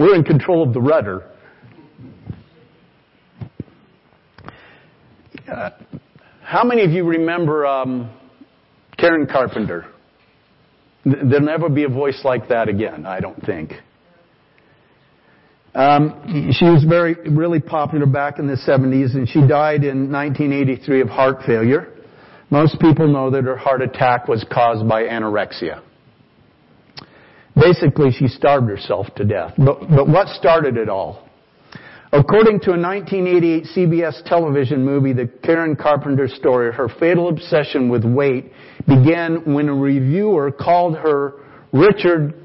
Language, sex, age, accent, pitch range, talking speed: English, male, 50-69, American, 130-165 Hz, 125 wpm